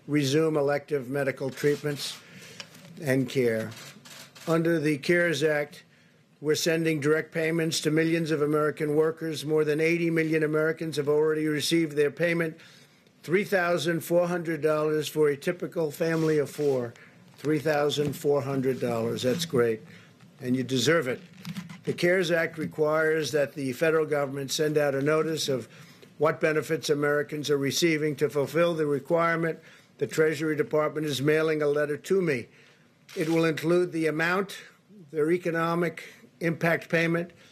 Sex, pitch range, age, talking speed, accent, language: male, 150-170 Hz, 50-69, 135 wpm, American, English